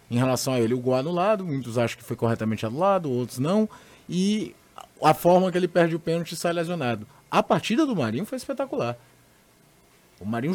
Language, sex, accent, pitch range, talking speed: Portuguese, male, Brazilian, 125-180 Hz, 195 wpm